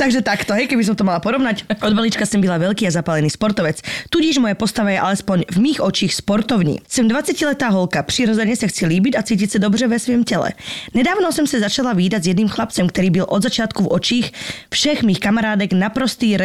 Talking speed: 210 wpm